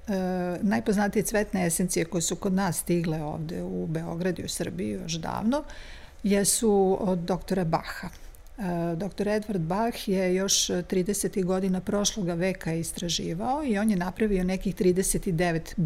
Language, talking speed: Croatian, 145 wpm